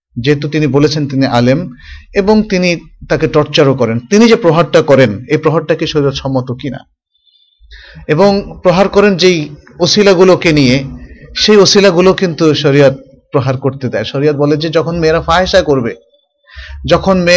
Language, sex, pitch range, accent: Bengali, male, 135-180 Hz, native